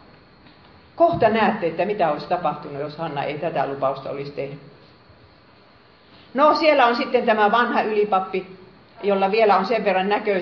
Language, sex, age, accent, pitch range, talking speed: Finnish, female, 40-59, native, 160-225 Hz, 150 wpm